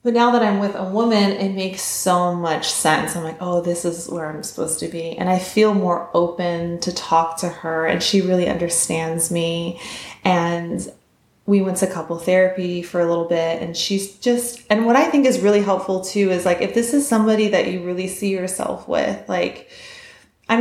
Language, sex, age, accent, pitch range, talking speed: English, female, 20-39, American, 170-200 Hz, 205 wpm